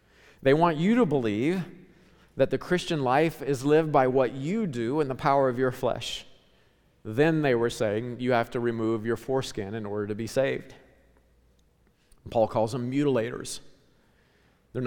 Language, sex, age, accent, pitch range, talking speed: English, male, 40-59, American, 105-135 Hz, 165 wpm